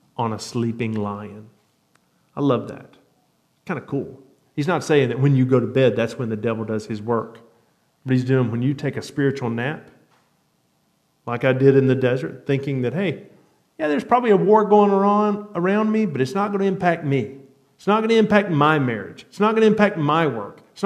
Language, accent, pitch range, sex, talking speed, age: English, American, 105-140 Hz, male, 215 wpm, 40-59